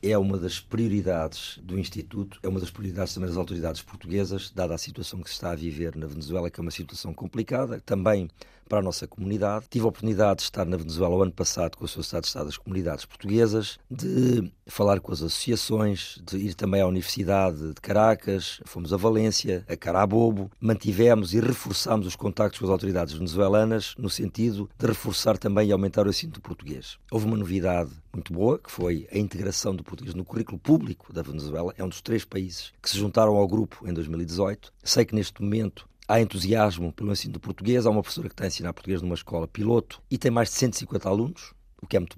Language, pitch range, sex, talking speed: Portuguese, 90-110 Hz, male, 210 wpm